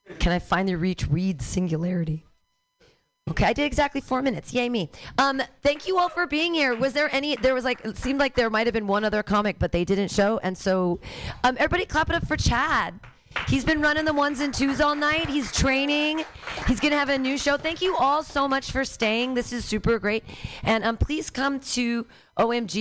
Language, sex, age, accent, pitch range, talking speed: English, female, 30-49, American, 165-255 Hz, 225 wpm